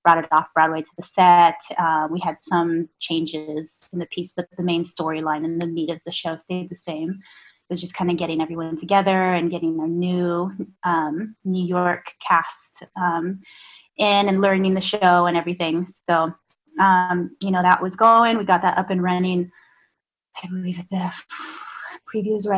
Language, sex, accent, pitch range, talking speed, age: English, female, American, 170-195 Hz, 185 wpm, 20-39